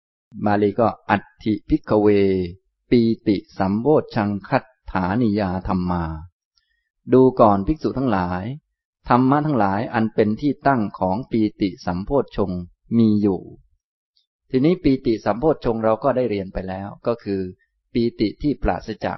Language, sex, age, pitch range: Thai, male, 20-39, 95-125 Hz